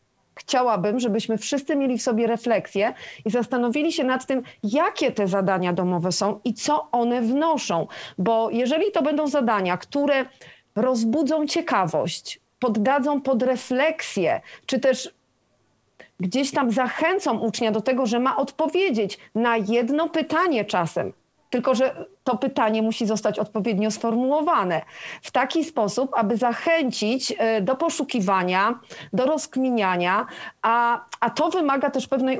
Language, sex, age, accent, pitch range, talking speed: English, female, 40-59, Polish, 225-280 Hz, 130 wpm